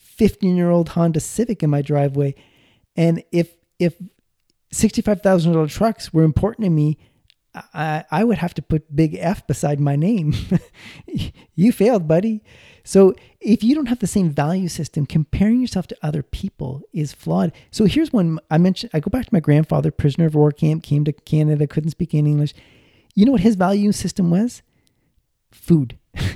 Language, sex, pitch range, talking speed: English, male, 145-190 Hz, 175 wpm